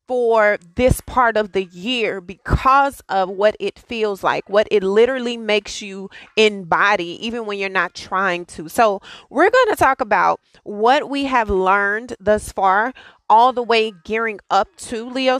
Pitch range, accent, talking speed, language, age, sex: 190-245 Hz, American, 170 wpm, English, 30-49, female